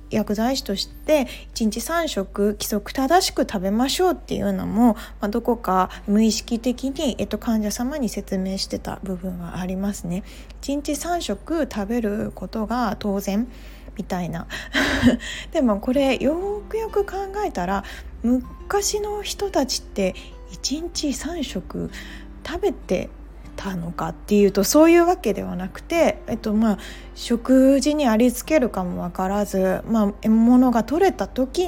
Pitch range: 200-280 Hz